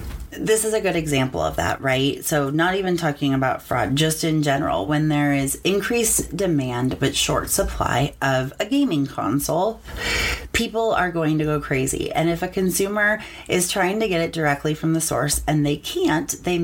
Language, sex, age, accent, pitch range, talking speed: English, female, 30-49, American, 135-170 Hz, 190 wpm